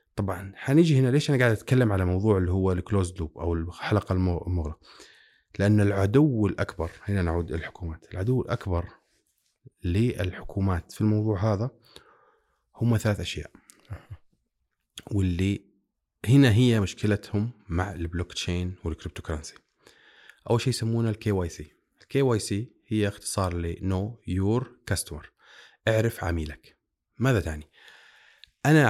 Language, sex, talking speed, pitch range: Arabic, male, 125 wpm, 90-115 Hz